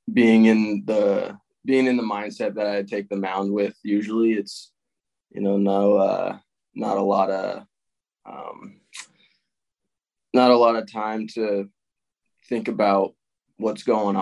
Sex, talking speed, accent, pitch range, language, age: male, 145 wpm, American, 100-115 Hz, English, 20-39